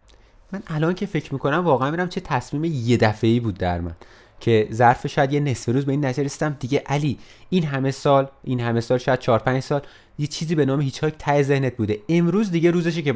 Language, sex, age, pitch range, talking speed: Persian, male, 30-49, 110-155 Hz, 220 wpm